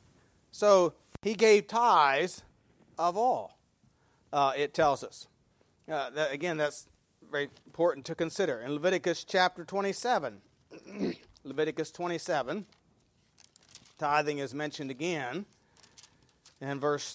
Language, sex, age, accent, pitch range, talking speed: English, male, 40-59, American, 145-185 Hz, 100 wpm